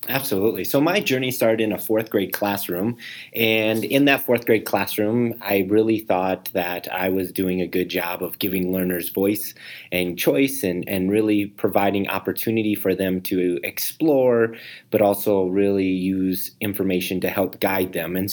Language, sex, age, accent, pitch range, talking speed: English, male, 30-49, American, 95-110 Hz, 165 wpm